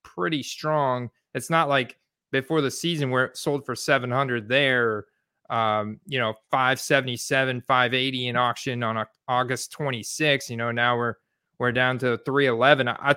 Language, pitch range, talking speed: English, 125-150 Hz, 150 wpm